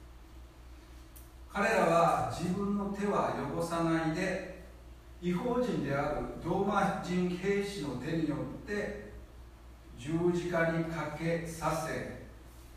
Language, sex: Japanese, male